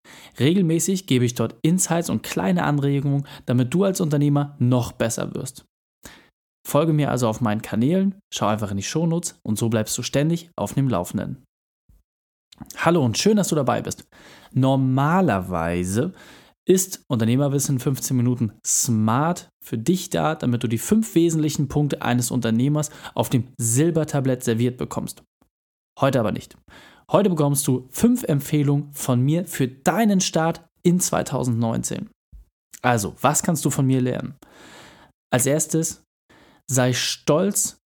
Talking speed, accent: 140 wpm, German